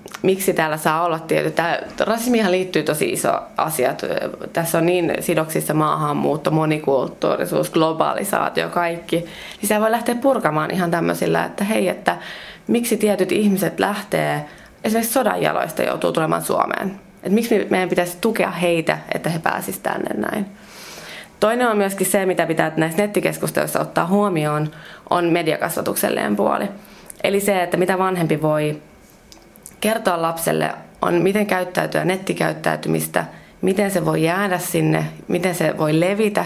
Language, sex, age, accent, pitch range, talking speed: Finnish, female, 20-39, native, 155-195 Hz, 135 wpm